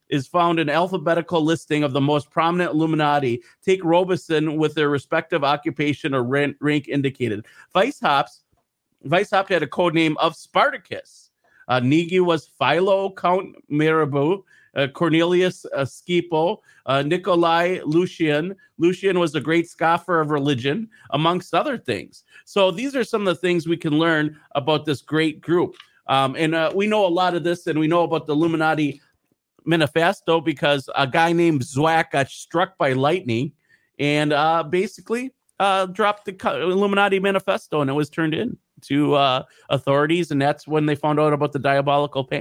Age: 40-59